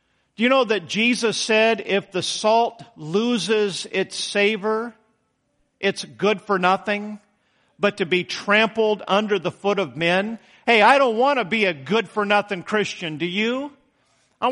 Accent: American